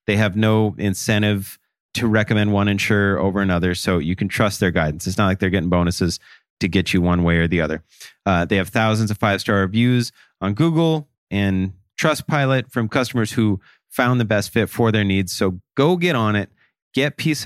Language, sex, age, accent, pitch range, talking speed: English, male, 30-49, American, 100-135 Hz, 200 wpm